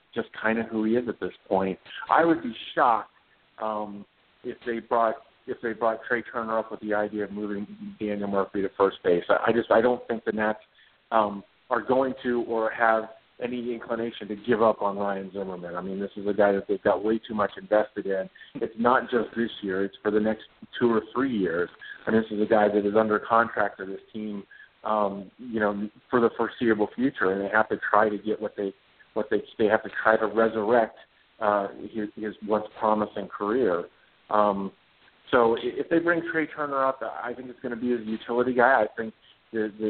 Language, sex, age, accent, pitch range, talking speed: English, male, 50-69, American, 105-115 Hz, 215 wpm